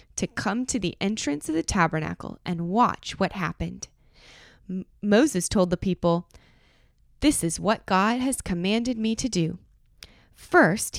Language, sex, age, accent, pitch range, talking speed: English, female, 20-39, American, 175-225 Hz, 140 wpm